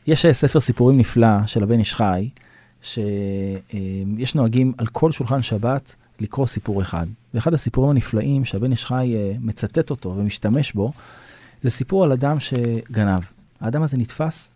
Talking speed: 135 wpm